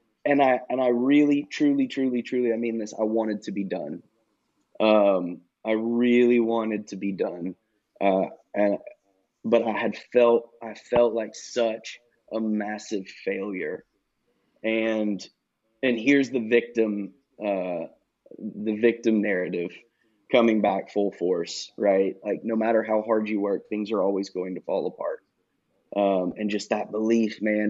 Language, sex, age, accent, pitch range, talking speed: English, male, 20-39, American, 105-115 Hz, 150 wpm